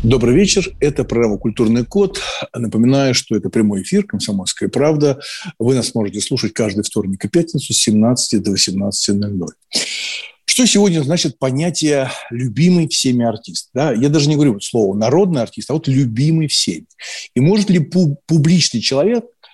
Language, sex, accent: Russian, male, native